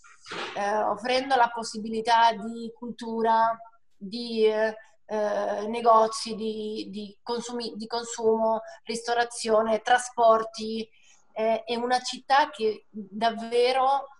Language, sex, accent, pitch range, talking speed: Italian, female, native, 215-245 Hz, 95 wpm